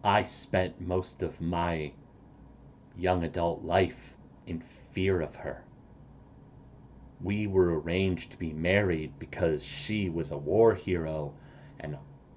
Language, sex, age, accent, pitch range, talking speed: English, male, 40-59, American, 75-95 Hz, 120 wpm